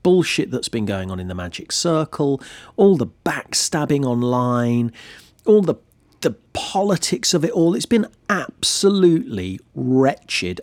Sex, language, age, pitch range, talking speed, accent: male, English, 40-59, 105-170 Hz, 135 wpm, British